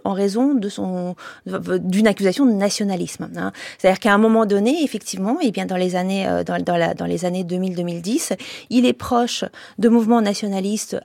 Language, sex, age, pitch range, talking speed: French, female, 40-59, 195-240 Hz, 160 wpm